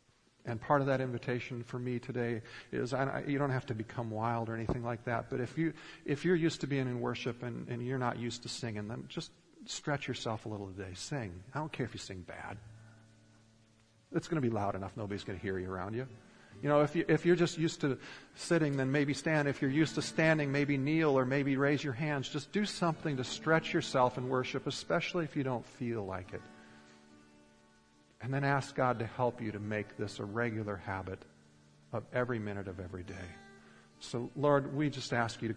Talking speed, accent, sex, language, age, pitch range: 225 wpm, American, male, English, 40-59, 105-130 Hz